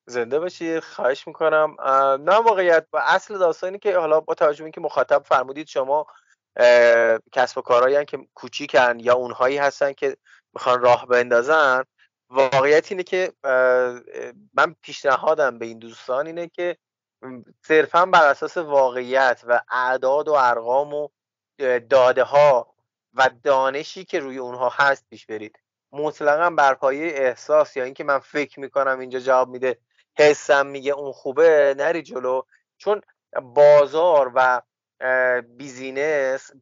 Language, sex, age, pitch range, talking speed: Persian, male, 30-49, 125-155 Hz, 130 wpm